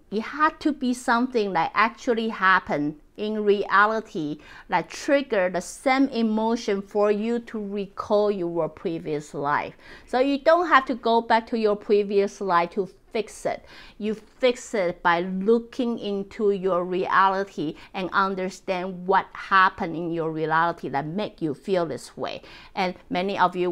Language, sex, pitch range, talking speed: English, female, 175-225 Hz, 155 wpm